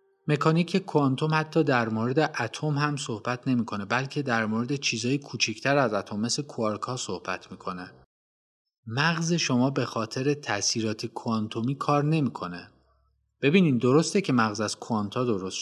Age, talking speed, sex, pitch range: 30-49, 145 wpm, male, 105-145 Hz